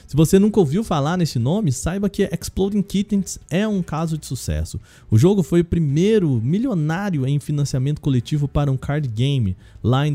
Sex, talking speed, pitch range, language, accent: male, 185 wpm, 130-185 Hz, Portuguese, Brazilian